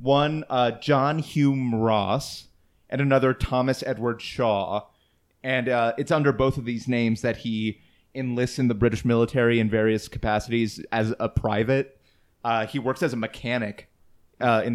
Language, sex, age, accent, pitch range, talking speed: English, male, 30-49, American, 105-125 Hz, 160 wpm